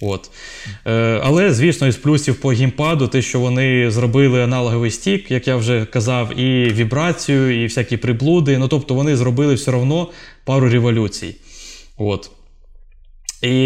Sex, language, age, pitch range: male, Ukrainian, 20-39, 120-150 Hz